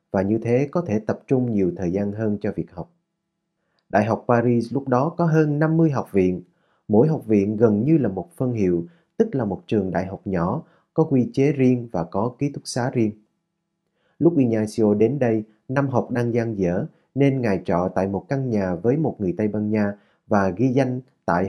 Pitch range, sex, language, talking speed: 100-135 Hz, male, Vietnamese, 210 wpm